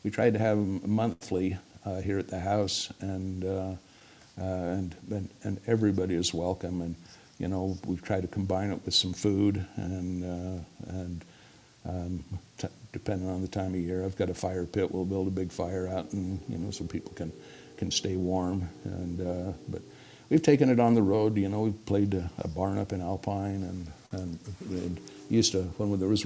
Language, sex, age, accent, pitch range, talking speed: English, male, 60-79, American, 90-100 Hz, 205 wpm